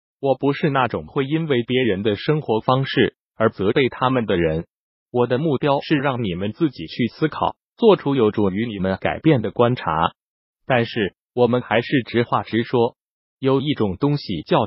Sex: male